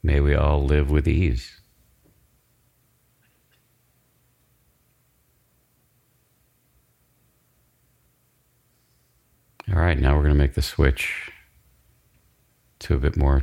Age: 50-69